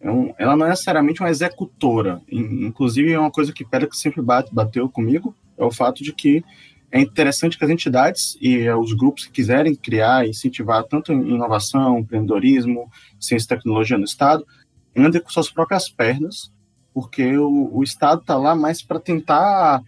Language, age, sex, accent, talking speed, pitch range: Portuguese, 20-39, male, Brazilian, 170 wpm, 120-155 Hz